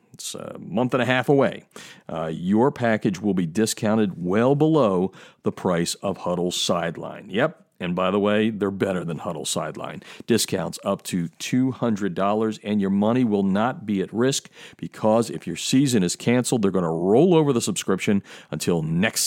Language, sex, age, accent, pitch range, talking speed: English, male, 50-69, American, 90-125 Hz, 175 wpm